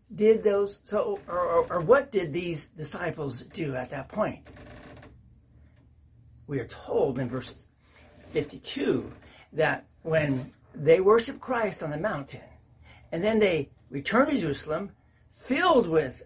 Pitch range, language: 140-220 Hz, Japanese